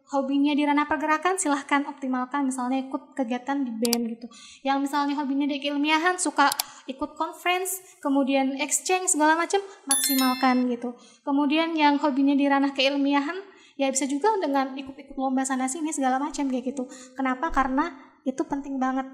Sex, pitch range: female, 255-295 Hz